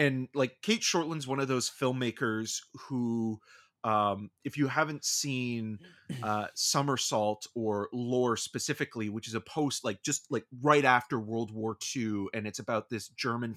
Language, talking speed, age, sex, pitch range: English, 160 wpm, 30-49, male, 105-130 Hz